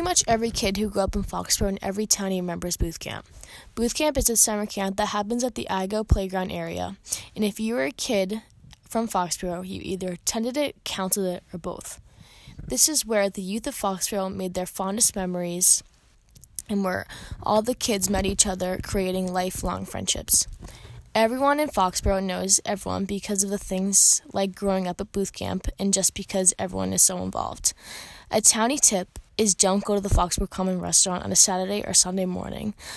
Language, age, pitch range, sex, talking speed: English, 10-29, 185-215 Hz, female, 190 wpm